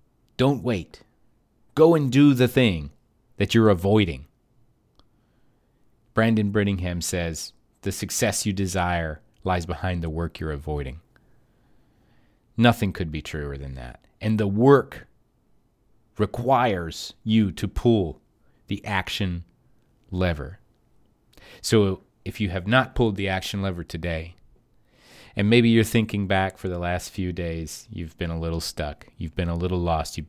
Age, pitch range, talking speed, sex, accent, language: 30-49, 85-115 Hz, 140 wpm, male, American, English